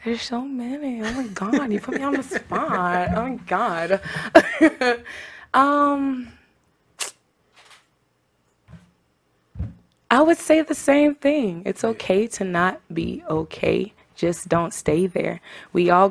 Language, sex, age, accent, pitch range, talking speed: English, female, 20-39, American, 165-210 Hz, 125 wpm